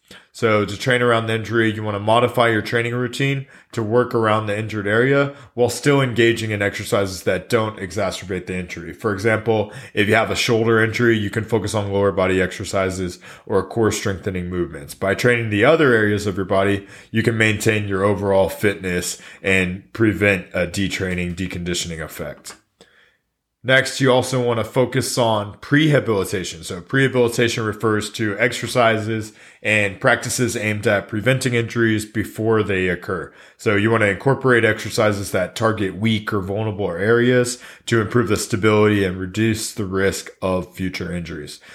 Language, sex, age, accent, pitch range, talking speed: English, male, 20-39, American, 95-115 Hz, 160 wpm